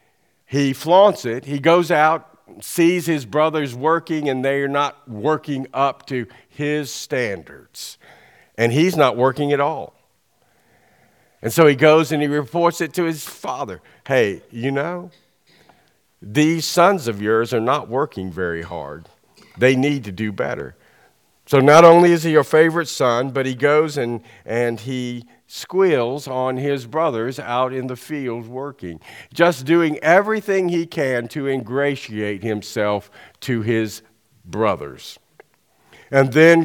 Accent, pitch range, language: American, 120-160 Hz, English